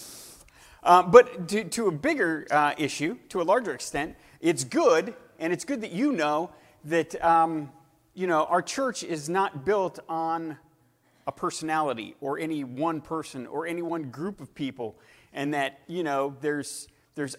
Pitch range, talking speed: 145-190 Hz, 165 wpm